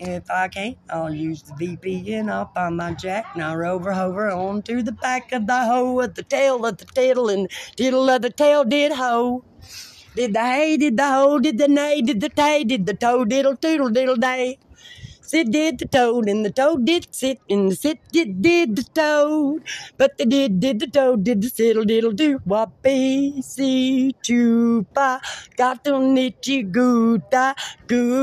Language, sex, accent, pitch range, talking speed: English, female, American, 220-285 Hz, 205 wpm